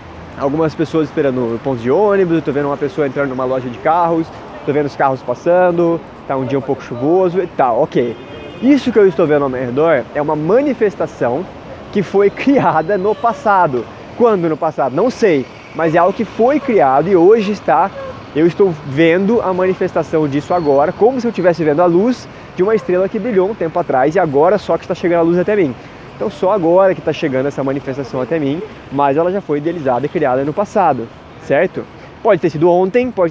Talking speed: 210 wpm